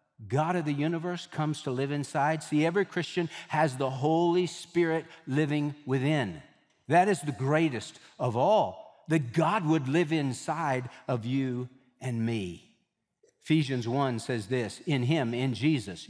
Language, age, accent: English, 60-79, American